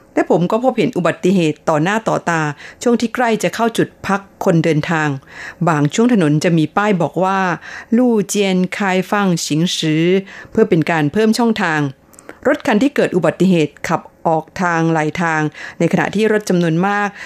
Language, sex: Thai, female